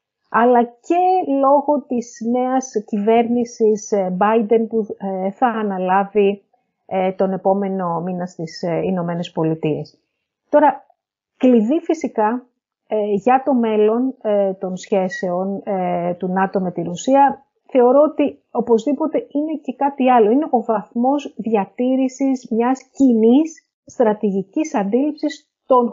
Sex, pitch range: female, 190-270 Hz